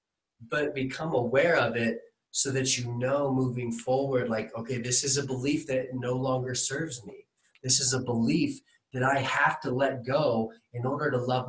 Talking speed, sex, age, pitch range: 190 wpm, male, 20-39, 120-145 Hz